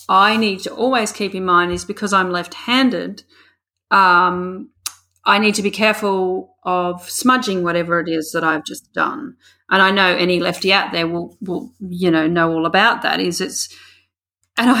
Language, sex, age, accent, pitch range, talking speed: English, female, 40-59, Australian, 180-225 Hz, 180 wpm